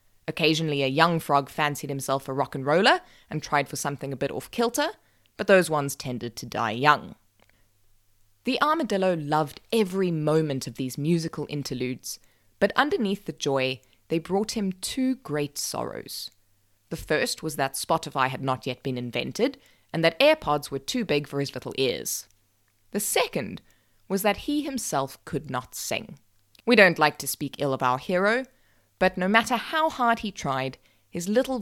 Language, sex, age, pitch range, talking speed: English, female, 20-39, 130-195 Hz, 170 wpm